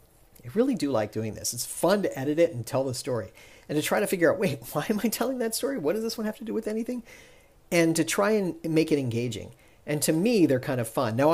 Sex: male